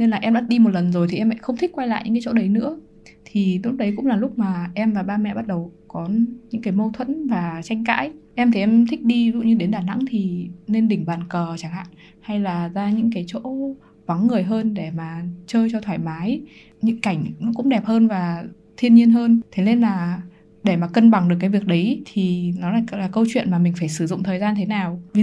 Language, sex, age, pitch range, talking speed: Vietnamese, female, 10-29, 180-225 Hz, 260 wpm